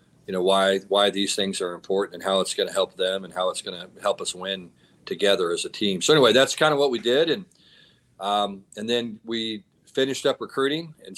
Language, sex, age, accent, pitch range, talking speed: English, male, 40-59, American, 100-130 Hz, 235 wpm